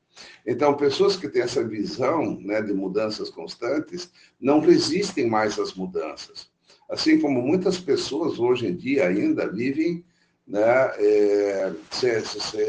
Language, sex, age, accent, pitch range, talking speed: Portuguese, male, 60-79, Brazilian, 125-175 Hz, 120 wpm